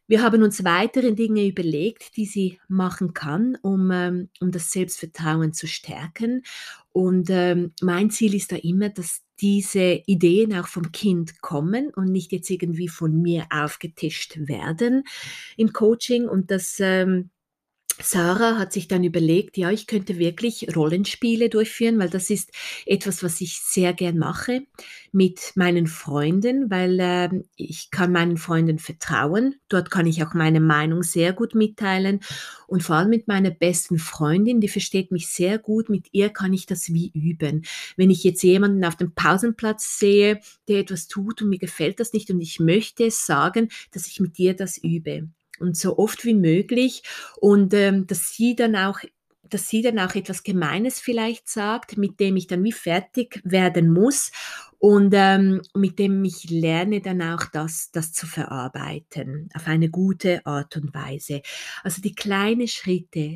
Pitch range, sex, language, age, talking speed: 170-205 Hz, female, German, 30-49, 165 wpm